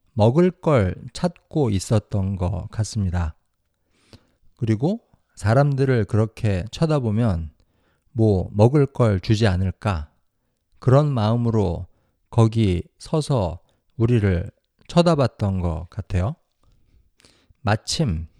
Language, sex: Korean, male